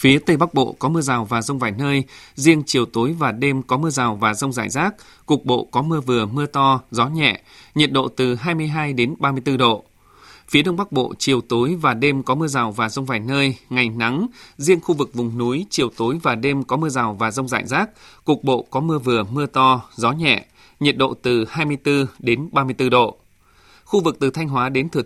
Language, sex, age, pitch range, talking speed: Vietnamese, male, 20-39, 120-150 Hz, 230 wpm